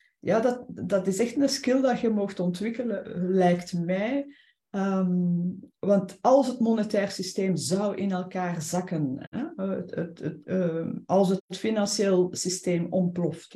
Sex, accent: female, Dutch